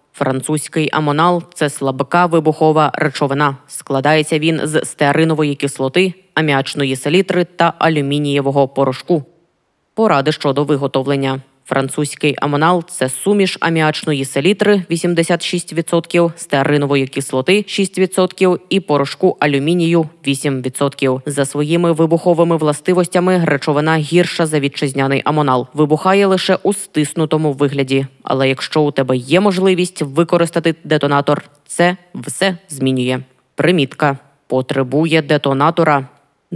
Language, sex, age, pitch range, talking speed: Ukrainian, female, 20-39, 140-175 Hz, 105 wpm